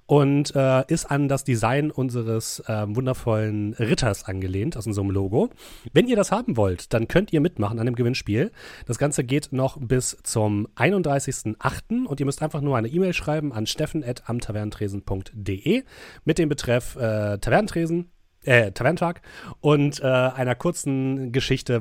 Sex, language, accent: male, German, German